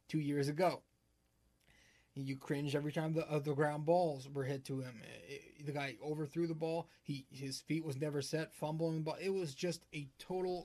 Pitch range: 145-175 Hz